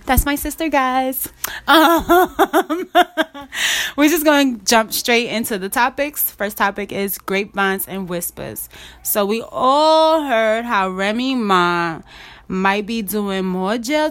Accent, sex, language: American, female, English